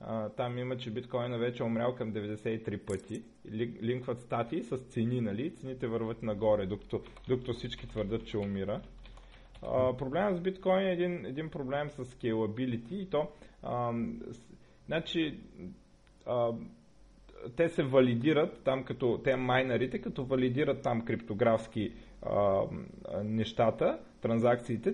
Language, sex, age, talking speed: Bulgarian, male, 30-49, 130 wpm